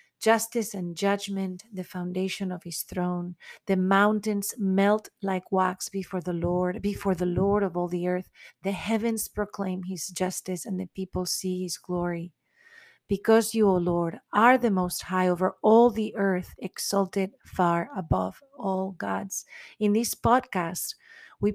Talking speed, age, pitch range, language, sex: 155 wpm, 40-59, 180-220 Hz, English, female